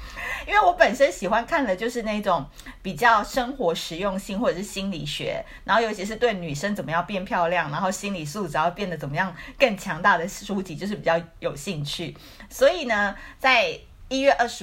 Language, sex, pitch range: Chinese, female, 165-215 Hz